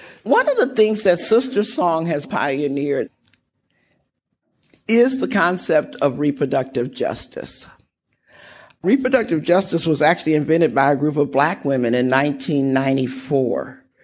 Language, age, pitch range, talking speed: English, 50-69, 140-200 Hz, 120 wpm